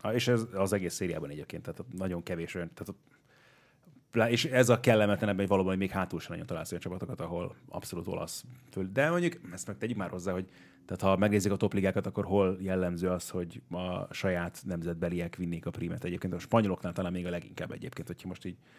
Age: 30-49